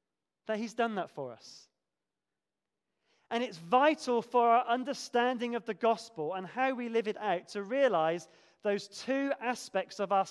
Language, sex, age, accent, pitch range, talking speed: English, male, 30-49, British, 190-245 Hz, 165 wpm